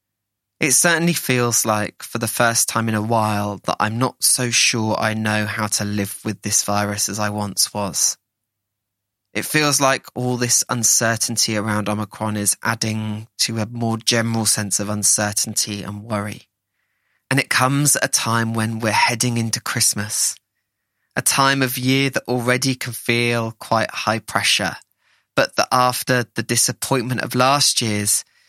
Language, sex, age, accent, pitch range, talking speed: English, male, 20-39, British, 105-120 Hz, 160 wpm